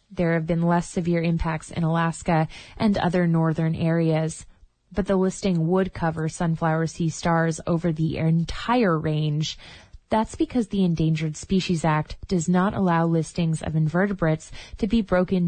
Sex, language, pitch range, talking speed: female, English, 160-185 Hz, 150 wpm